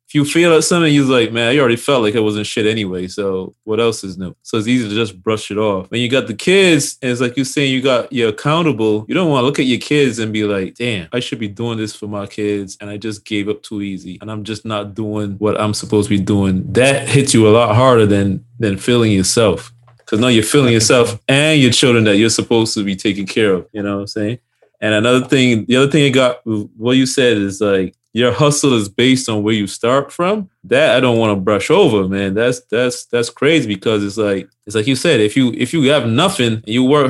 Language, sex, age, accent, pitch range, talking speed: English, male, 20-39, American, 105-140 Hz, 260 wpm